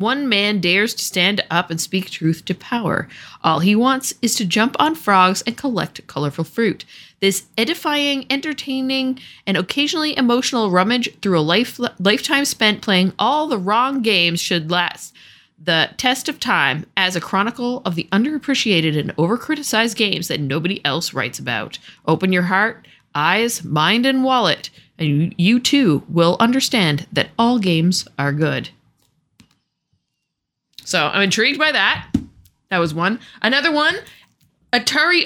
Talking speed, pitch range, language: 150 wpm, 180-260 Hz, English